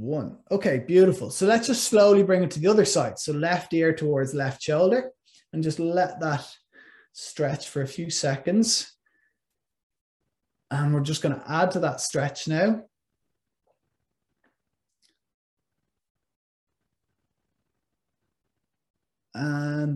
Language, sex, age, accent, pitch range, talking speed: English, male, 20-39, Irish, 145-185 Hz, 115 wpm